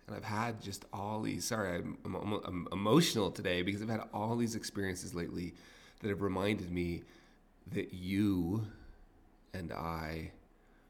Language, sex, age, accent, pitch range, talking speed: English, male, 30-49, American, 90-110 Hz, 150 wpm